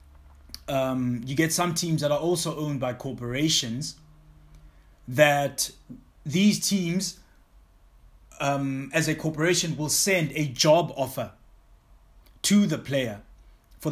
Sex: male